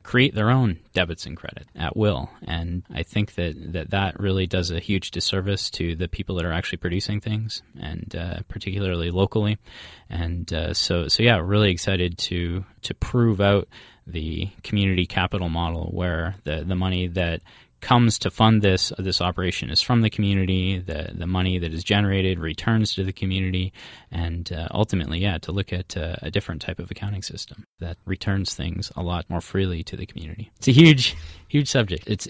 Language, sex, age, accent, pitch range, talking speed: English, male, 20-39, American, 85-105 Hz, 190 wpm